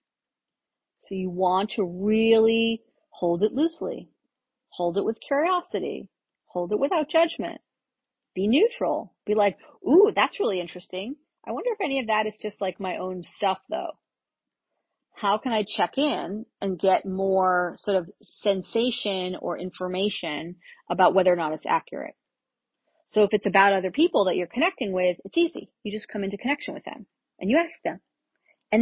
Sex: female